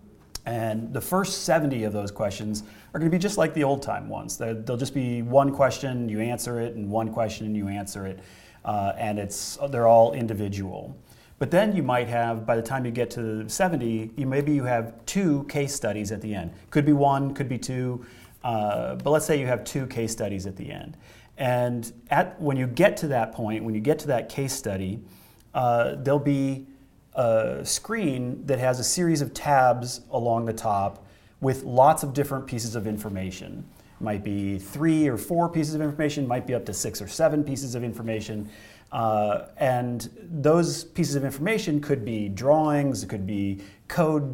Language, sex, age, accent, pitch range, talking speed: English, male, 30-49, American, 110-140 Hz, 195 wpm